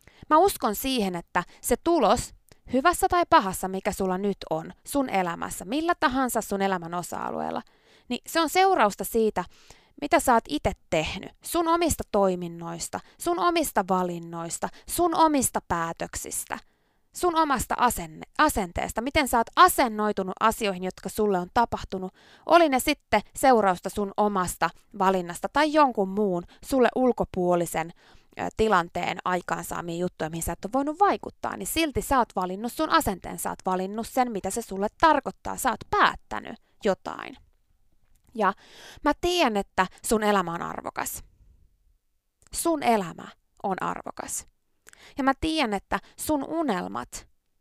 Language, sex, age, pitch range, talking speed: Finnish, female, 20-39, 190-295 Hz, 140 wpm